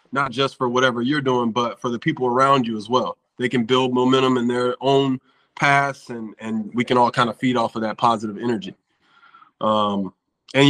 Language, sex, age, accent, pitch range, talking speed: English, male, 20-39, American, 115-135 Hz, 210 wpm